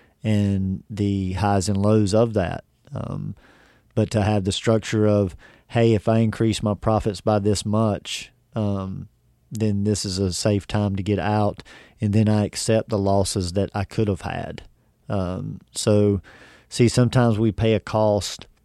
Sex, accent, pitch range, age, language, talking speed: male, American, 100-110 Hz, 40-59, English, 165 wpm